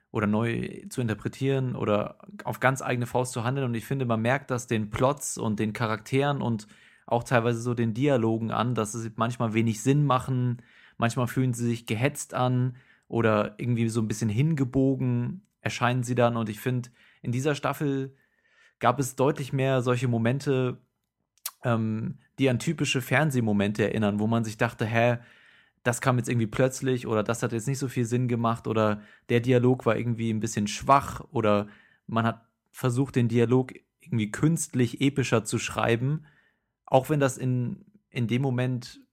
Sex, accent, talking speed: male, German, 175 wpm